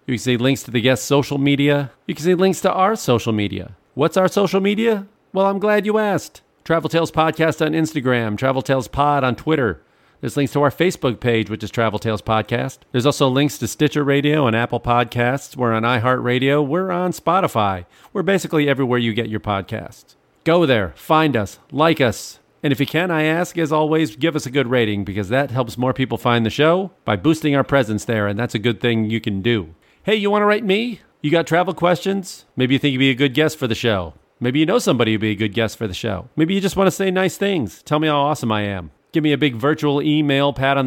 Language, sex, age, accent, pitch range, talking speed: English, male, 40-59, American, 115-160 Hz, 240 wpm